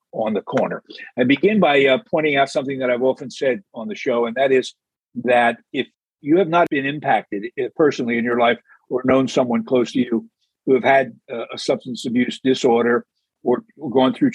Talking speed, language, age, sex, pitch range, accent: 205 wpm, English, 50-69, male, 120-150 Hz, American